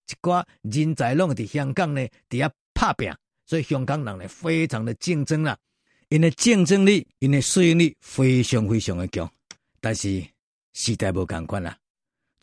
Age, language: 50-69, Chinese